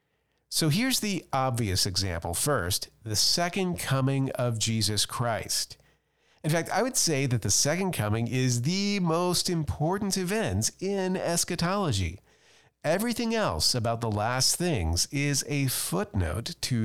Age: 40-59